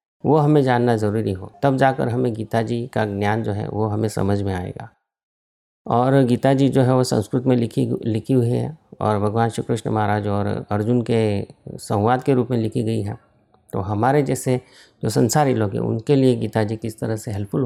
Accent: native